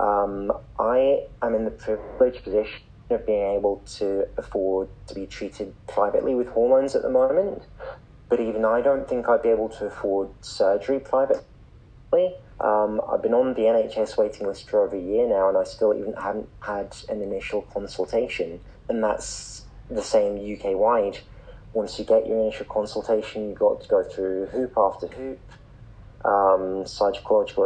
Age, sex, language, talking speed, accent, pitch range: 30-49, male, English, 165 wpm, British, 100-135 Hz